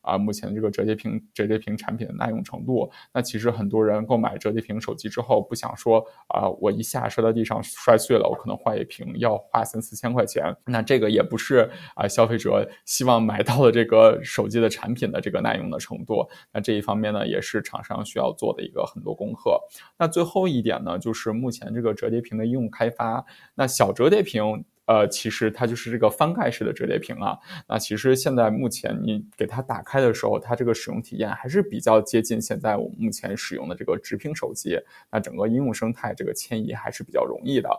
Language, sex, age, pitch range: English, male, 20-39, 110-125 Hz